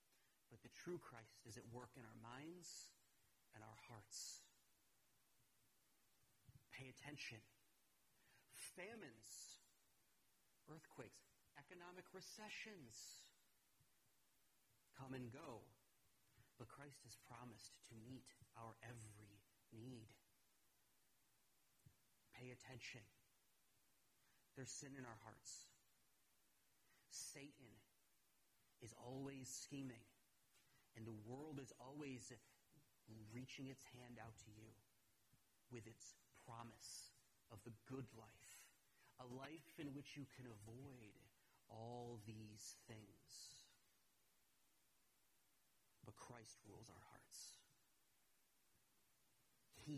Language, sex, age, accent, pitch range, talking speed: English, male, 30-49, American, 110-130 Hz, 90 wpm